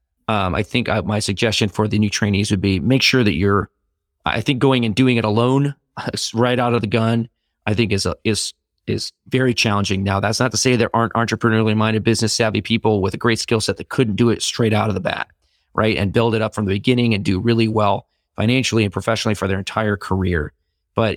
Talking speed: 230 wpm